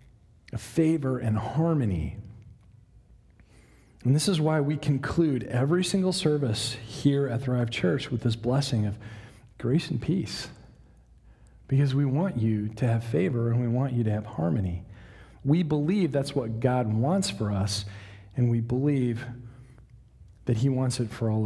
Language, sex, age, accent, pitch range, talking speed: English, male, 40-59, American, 105-130 Hz, 150 wpm